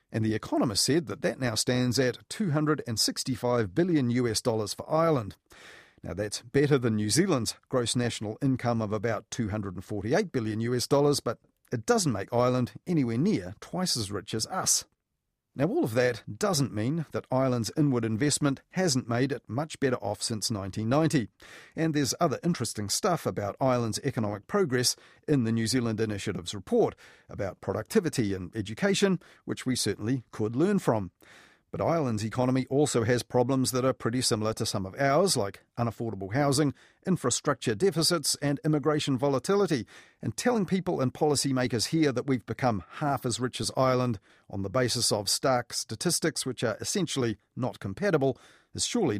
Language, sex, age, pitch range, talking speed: English, male, 40-59, 110-145 Hz, 165 wpm